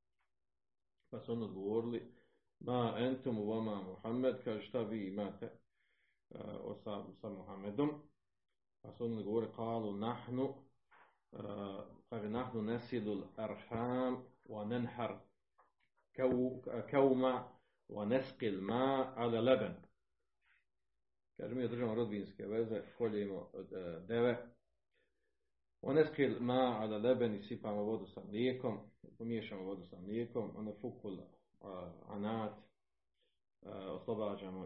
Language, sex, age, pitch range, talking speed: Croatian, male, 40-59, 105-125 Hz, 100 wpm